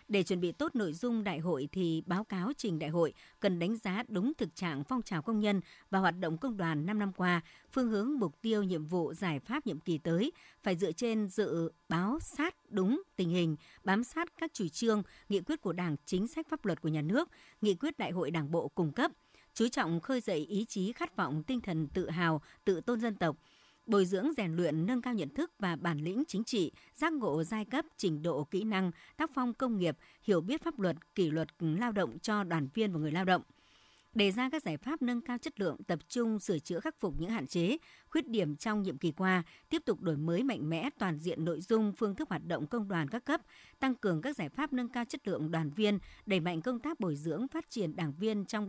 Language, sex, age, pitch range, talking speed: Vietnamese, male, 60-79, 170-235 Hz, 240 wpm